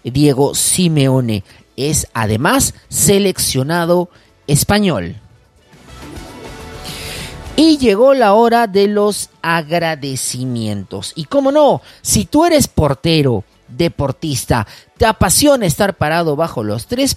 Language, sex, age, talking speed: Spanish, male, 40-59, 100 wpm